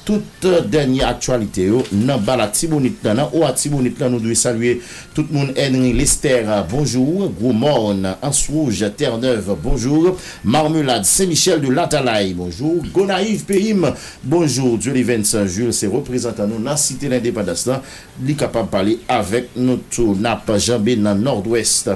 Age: 50-69